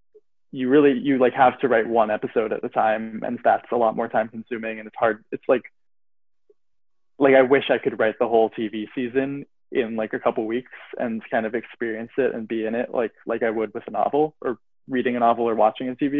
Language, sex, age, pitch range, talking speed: English, male, 20-39, 110-135 Hz, 235 wpm